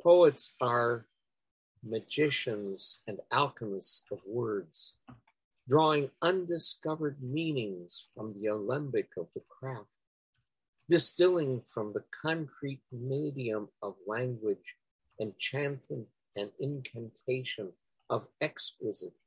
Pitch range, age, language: 110-145 Hz, 50-69, English